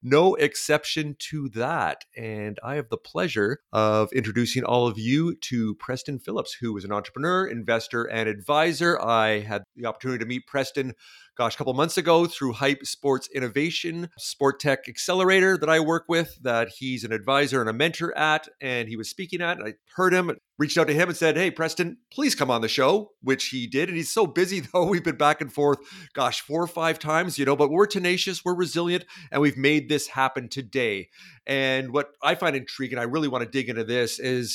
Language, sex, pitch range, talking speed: English, male, 125-160 Hz, 210 wpm